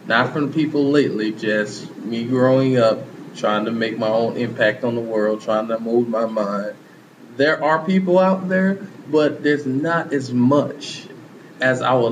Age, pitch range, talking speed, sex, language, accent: 20-39, 115-145 Hz, 175 wpm, male, English, American